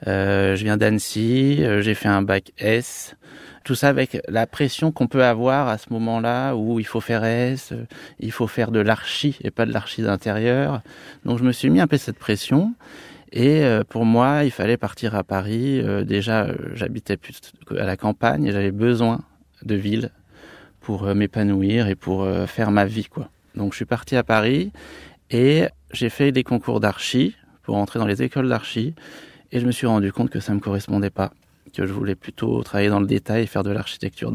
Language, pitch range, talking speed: French, 105-130 Hz, 210 wpm